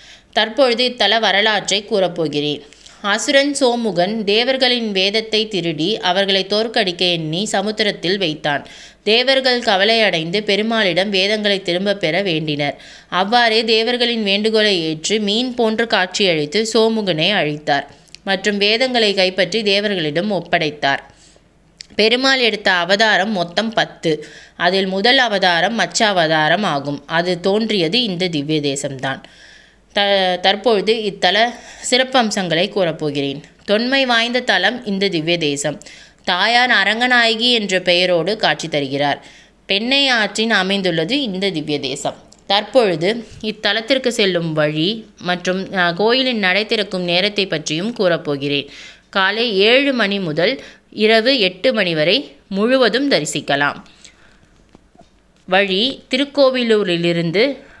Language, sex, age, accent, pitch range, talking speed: Tamil, female, 20-39, native, 175-225 Hz, 100 wpm